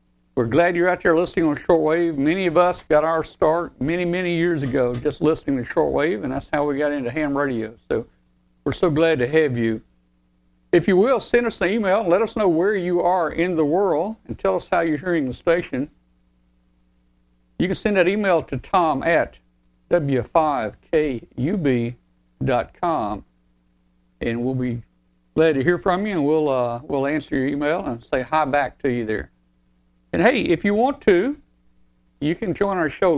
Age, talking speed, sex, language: 60-79, 185 wpm, male, English